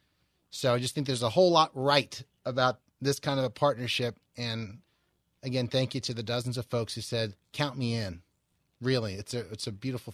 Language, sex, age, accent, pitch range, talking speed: English, male, 30-49, American, 120-160 Hz, 205 wpm